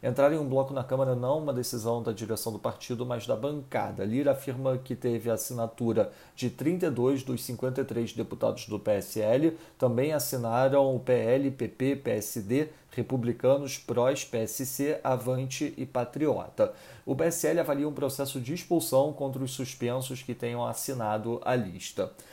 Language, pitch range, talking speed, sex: Portuguese, 120-140 Hz, 150 wpm, male